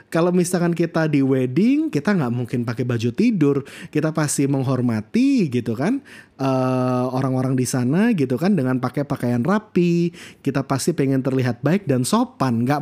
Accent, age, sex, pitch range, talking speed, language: native, 20-39, male, 130-195 Hz, 160 wpm, Indonesian